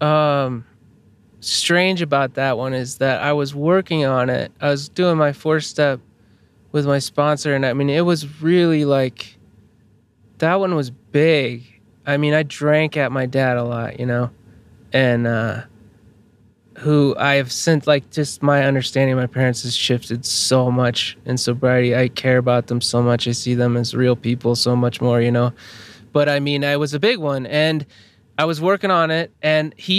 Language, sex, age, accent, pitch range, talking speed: English, male, 20-39, American, 120-150 Hz, 190 wpm